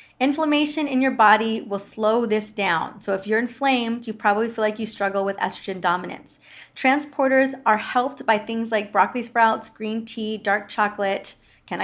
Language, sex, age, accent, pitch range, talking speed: English, female, 20-39, American, 205-250 Hz, 170 wpm